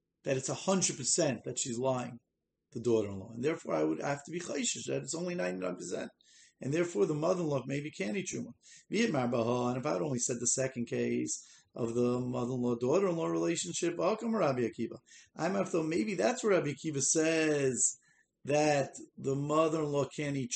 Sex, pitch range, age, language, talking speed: male, 125-170 Hz, 40-59, English, 205 wpm